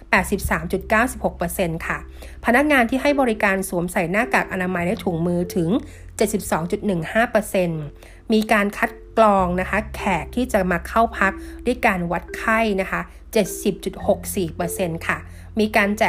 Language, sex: Thai, female